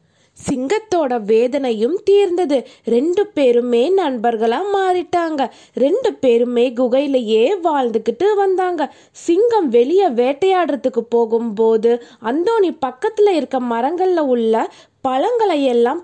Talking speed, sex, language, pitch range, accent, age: 80 wpm, female, Tamil, 240-335 Hz, native, 20-39